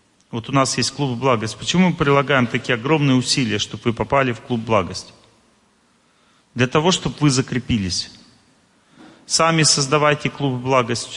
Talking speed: 145 wpm